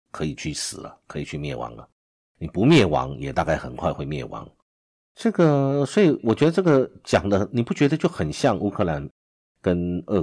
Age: 50-69